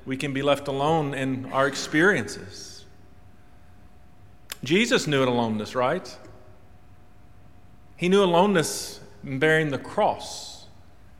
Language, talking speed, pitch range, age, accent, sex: English, 105 wpm, 100-150 Hz, 40-59, American, male